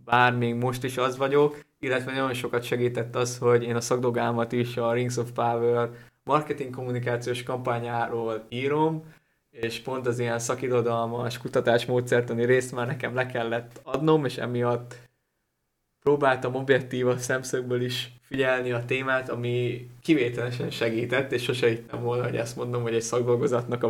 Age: 20-39